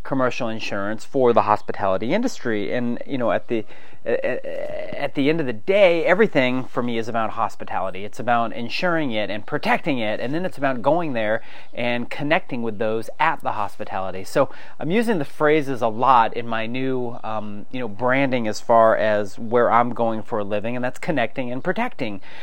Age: 30-49